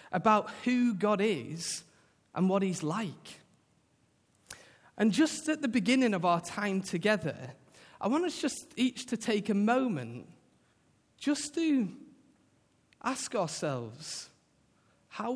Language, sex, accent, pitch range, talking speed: English, male, British, 155-230 Hz, 120 wpm